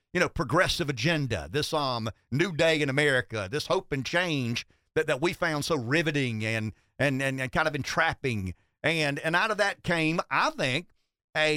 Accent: American